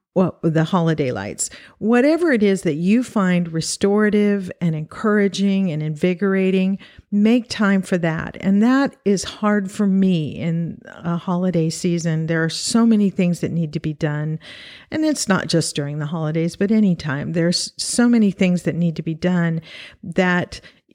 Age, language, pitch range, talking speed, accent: 50-69, English, 165-200 Hz, 165 wpm, American